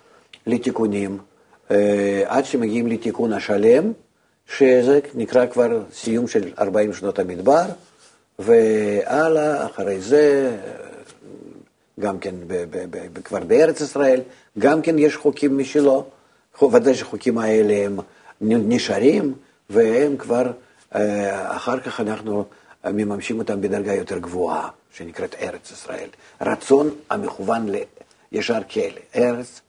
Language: Hebrew